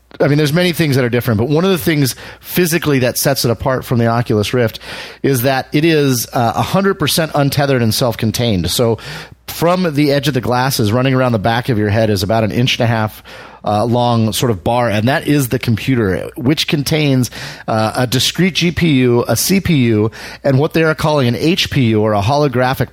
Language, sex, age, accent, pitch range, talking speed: English, male, 30-49, American, 115-145 Hz, 210 wpm